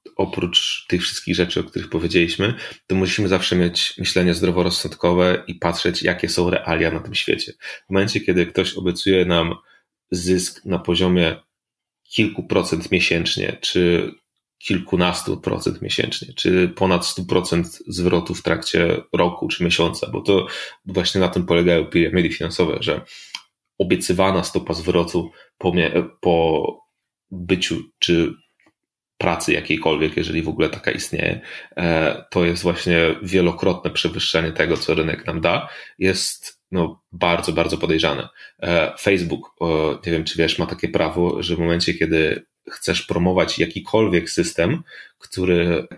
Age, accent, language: 30-49, native, Polish